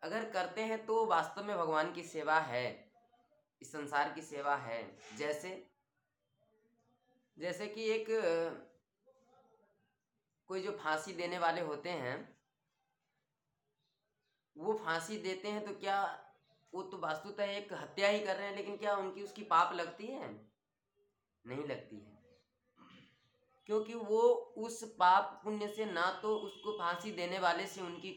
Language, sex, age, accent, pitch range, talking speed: Hindi, female, 20-39, native, 175-230 Hz, 140 wpm